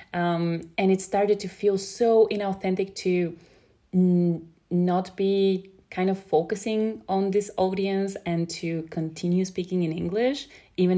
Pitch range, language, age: 165-195 Hz, Bulgarian, 20-39